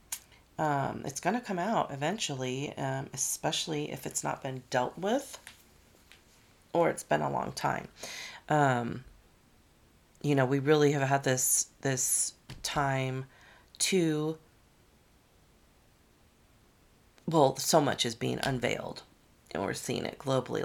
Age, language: 40-59, English